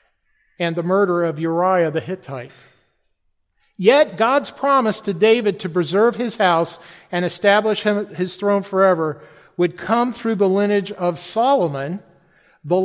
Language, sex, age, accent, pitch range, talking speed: English, male, 50-69, American, 160-210 Hz, 135 wpm